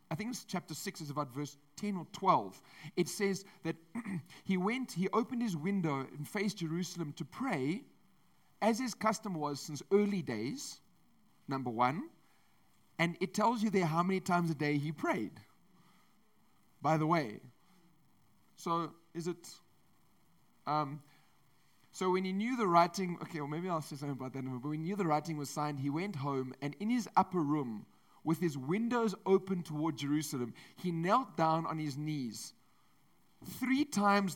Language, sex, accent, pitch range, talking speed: English, male, South African, 145-195 Hz, 170 wpm